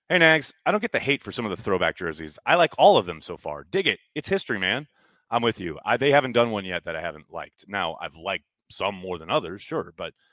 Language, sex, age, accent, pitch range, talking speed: English, male, 30-49, American, 95-150 Hz, 275 wpm